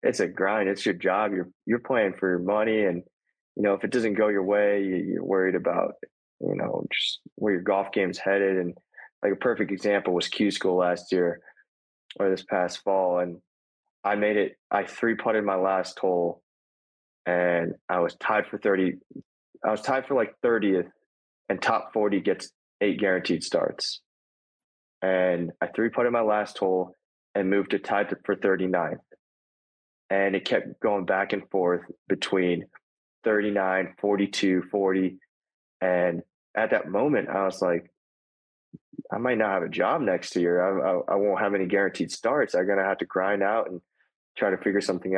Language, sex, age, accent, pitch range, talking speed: English, male, 20-39, American, 90-100 Hz, 175 wpm